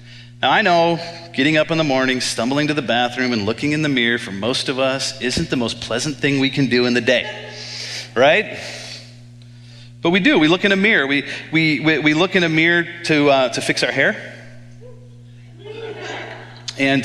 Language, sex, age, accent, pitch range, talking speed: English, male, 40-59, American, 120-145 Hz, 195 wpm